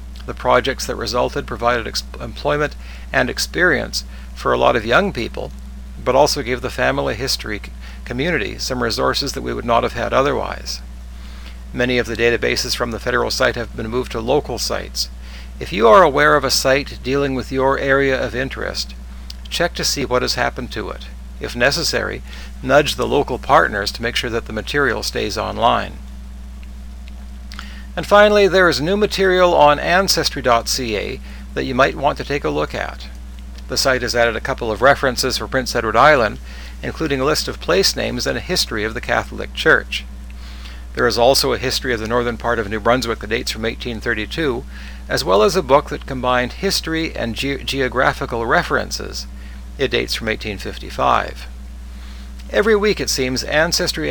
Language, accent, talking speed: English, American, 175 wpm